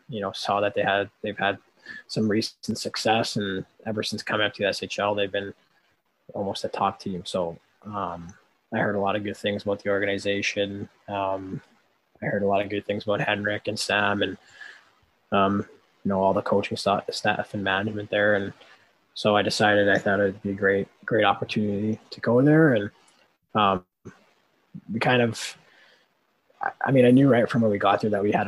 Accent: American